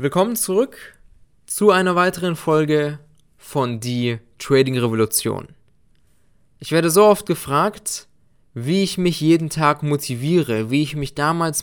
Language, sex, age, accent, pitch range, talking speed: German, male, 20-39, German, 130-165 Hz, 130 wpm